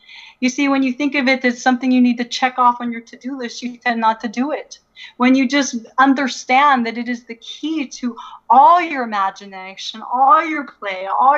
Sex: female